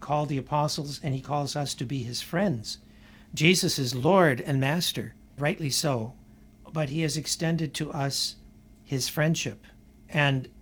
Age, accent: 60-79, American